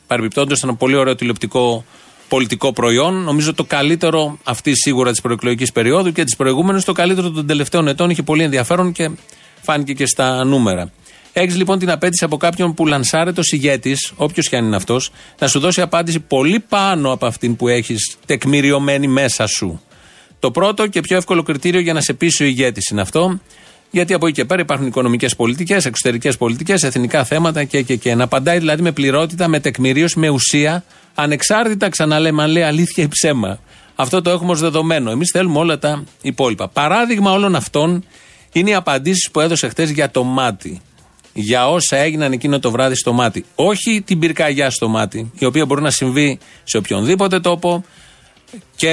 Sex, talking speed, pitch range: male, 185 wpm, 130-170 Hz